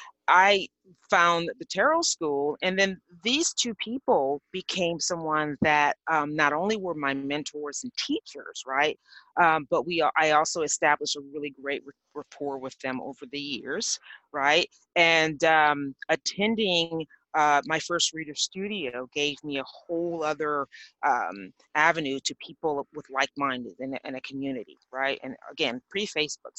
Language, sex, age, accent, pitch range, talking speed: English, female, 30-49, American, 145-185 Hz, 145 wpm